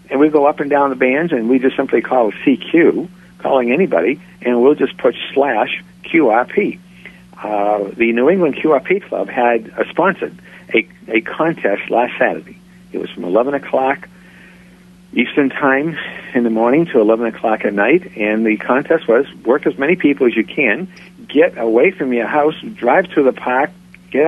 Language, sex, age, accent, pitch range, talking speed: English, male, 60-79, American, 120-180 Hz, 180 wpm